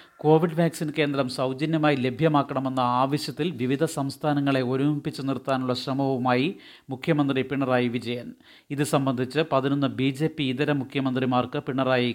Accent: native